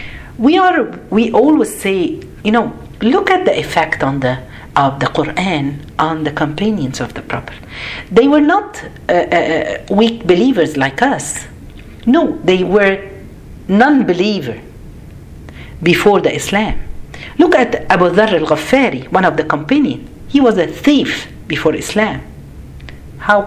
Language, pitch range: Arabic, 150-240 Hz